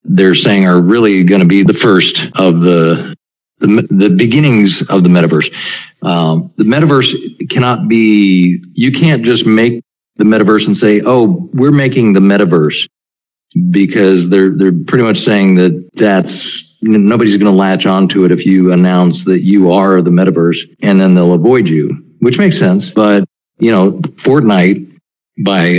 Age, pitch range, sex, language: 50-69, 95-125 Hz, male, English